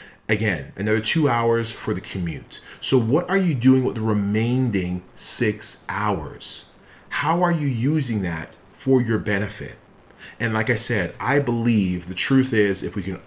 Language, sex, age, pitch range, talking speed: English, male, 30-49, 95-120 Hz, 165 wpm